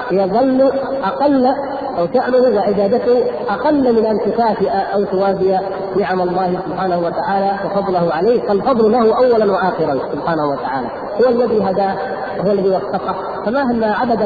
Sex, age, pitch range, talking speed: female, 40-59, 185-235 Hz, 130 wpm